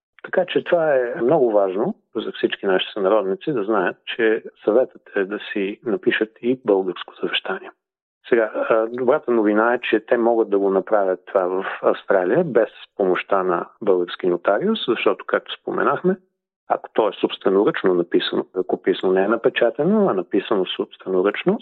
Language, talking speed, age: Bulgarian, 155 wpm, 40-59